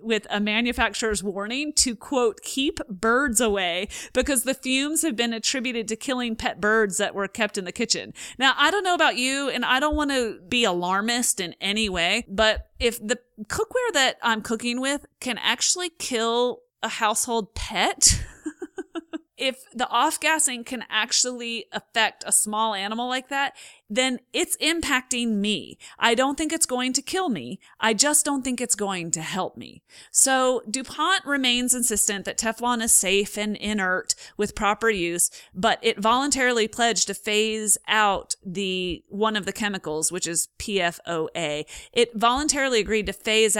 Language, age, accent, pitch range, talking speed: English, 30-49, American, 205-260 Hz, 165 wpm